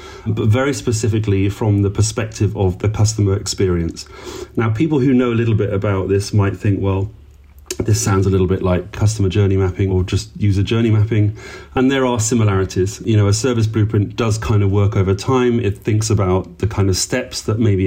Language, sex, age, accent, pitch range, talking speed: English, male, 30-49, British, 95-115 Hz, 200 wpm